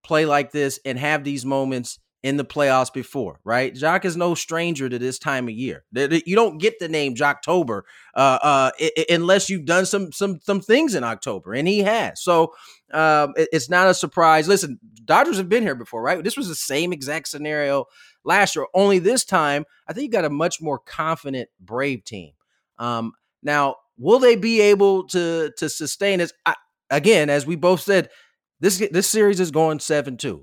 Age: 30-49